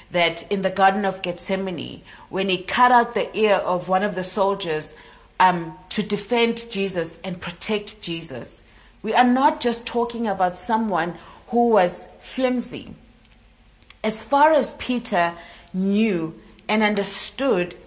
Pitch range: 165-215 Hz